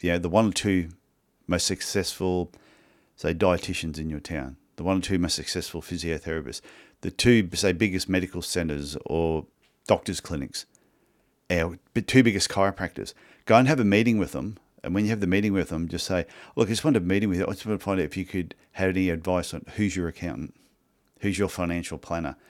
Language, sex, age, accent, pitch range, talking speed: English, male, 40-59, Australian, 85-100 Hz, 210 wpm